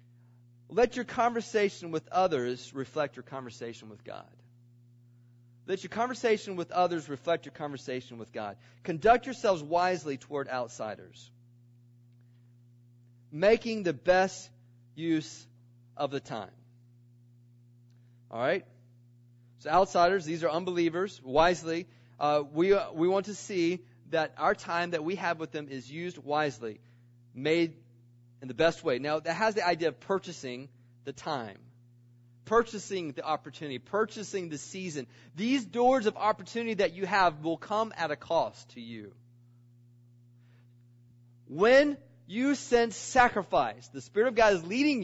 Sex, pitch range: male, 120-190 Hz